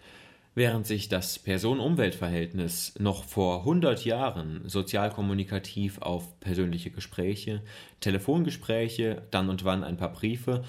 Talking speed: 120 wpm